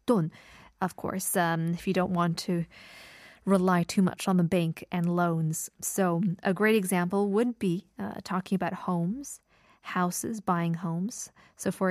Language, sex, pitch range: Korean, female, 180-225 Hz